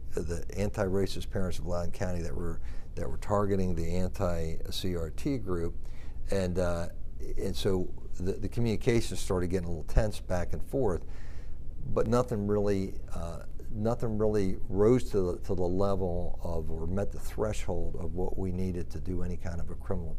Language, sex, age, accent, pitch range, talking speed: English, male, 50-69, American, 85-100 Hz, 170 wpm